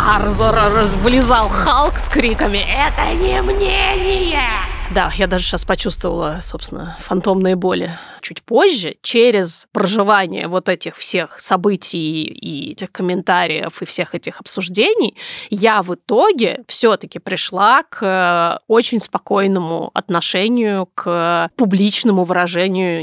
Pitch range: 175-210 Hz